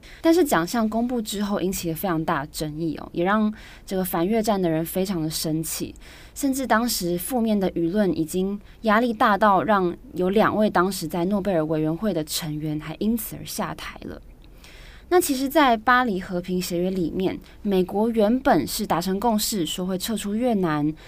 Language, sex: Chinese, female